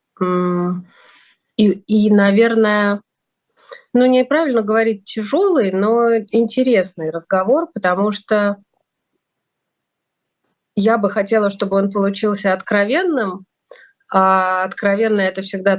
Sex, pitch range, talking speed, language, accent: female, 180-225 Hz, 85 wpm, Russian, native